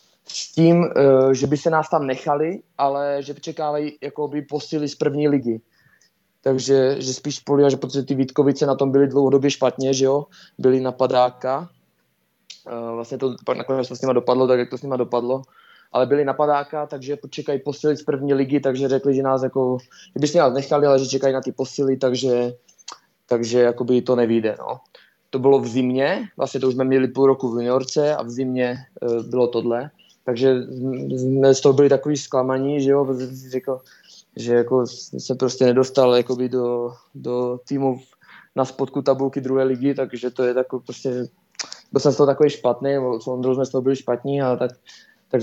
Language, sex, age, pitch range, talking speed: Czech, male, 20-39, 125-140 Hz, 180 wpm